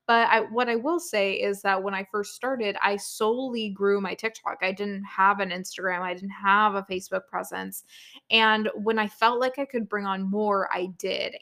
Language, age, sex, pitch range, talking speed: English, 20-39, female, 190-230 Hz, 210 wpm